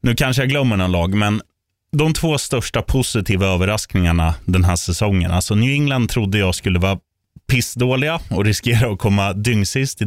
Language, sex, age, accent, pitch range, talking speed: Swedish, male, 20-39, native, 95-125 Hz, 175 wpm